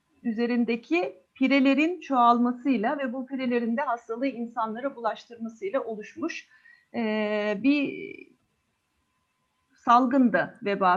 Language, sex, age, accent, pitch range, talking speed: Turkish, female, 50-69, native, 220-290 Hz, 75 wpm